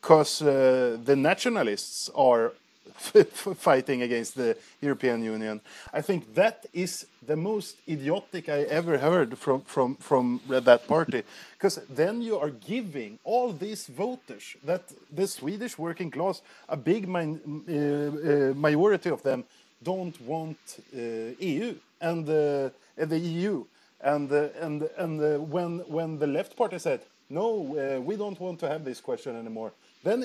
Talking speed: 155 wpm